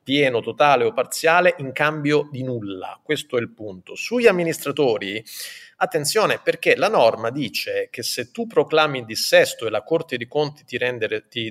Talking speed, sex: 165 wpm, male